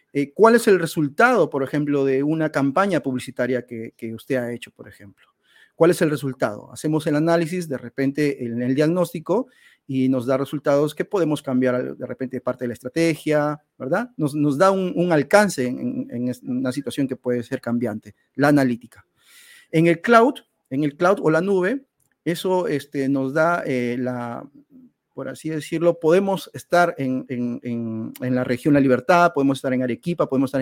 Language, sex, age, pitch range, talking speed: Spanish, male, 40-59, 125-165 Hz, 180 wpm